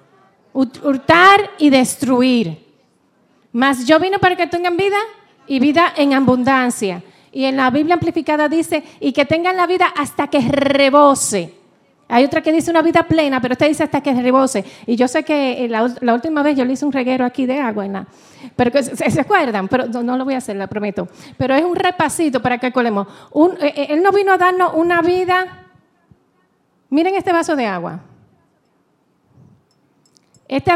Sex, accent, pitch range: female, American, 240-320 Hz